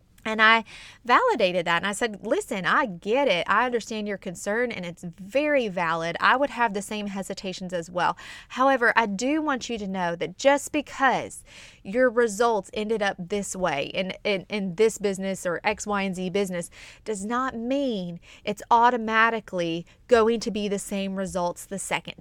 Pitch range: 195-270 Hz